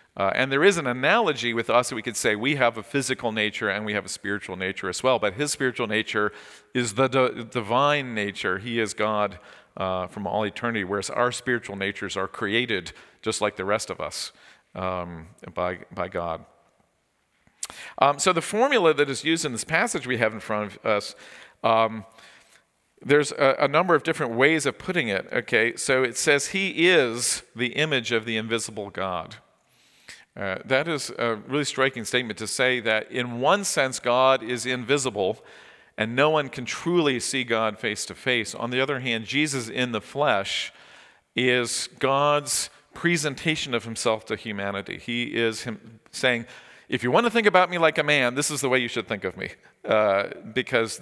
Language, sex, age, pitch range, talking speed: English, male, 50-69, 110-140 Hz, 190 wpm